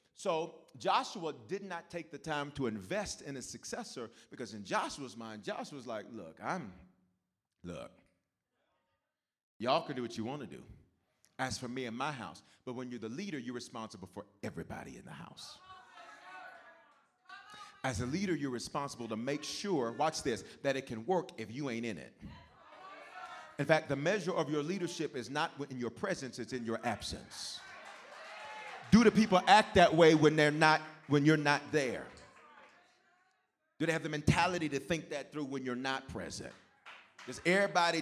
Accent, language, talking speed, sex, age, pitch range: American, English, 170 wpm, male, 40-59, 120-170 Hz